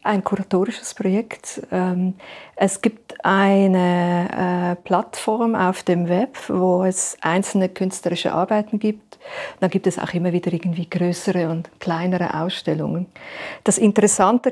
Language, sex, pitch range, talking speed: German, female, 185-215 Hz, 120 wpm